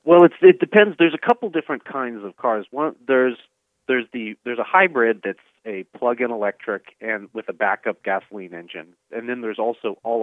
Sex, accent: male, American